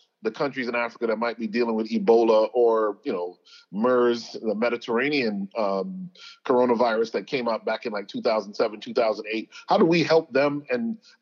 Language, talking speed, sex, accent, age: English, 170 wpm, male, American, 40-59